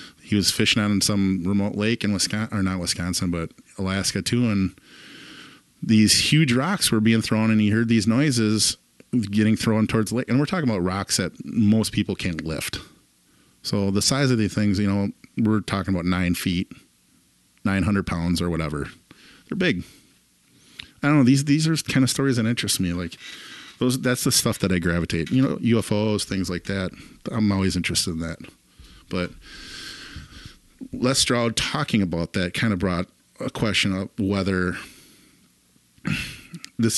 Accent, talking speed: American, 175 wpm